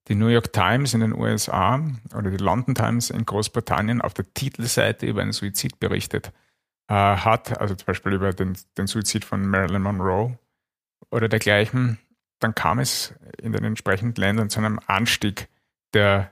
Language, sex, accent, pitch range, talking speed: German, male, Austrian, 100-115 Hz, 165 wpm